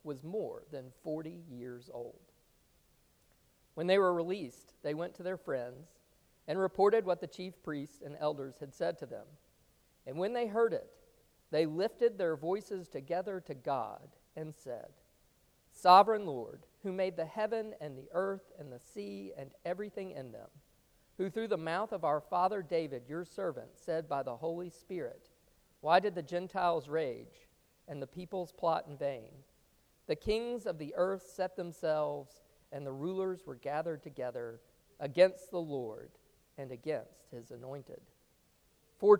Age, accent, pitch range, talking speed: 50-69, American, 150-195 Hz, 160 wpm